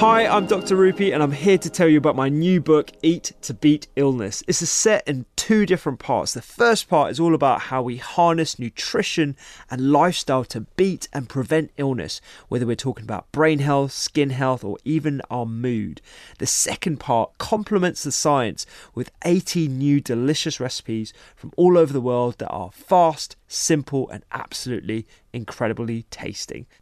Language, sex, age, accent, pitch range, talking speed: English, male, 20-39, British, 120-165 Hz, 175 wpm